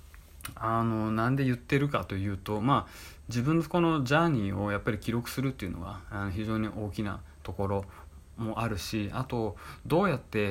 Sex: male